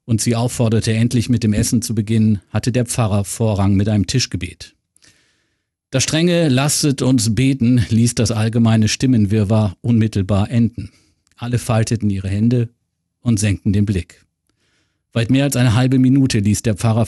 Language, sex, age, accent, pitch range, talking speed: German, male, 50-69, German, 100-120 Hz, 155 wpm